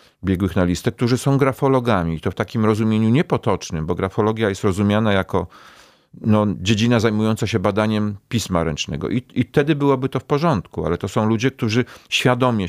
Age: 40-59